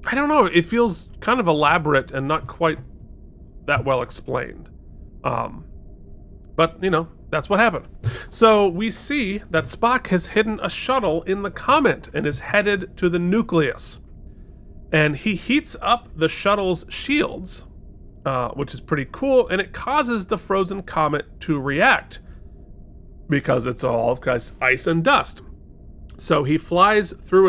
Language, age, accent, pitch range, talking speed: English, 30-49, American, 140-210 Hz, 150 wpm